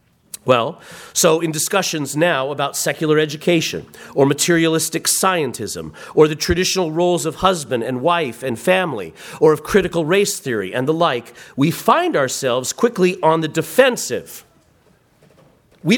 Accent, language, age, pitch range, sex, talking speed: American, English, 40-59, 165-220 Hz, male, 140 wpm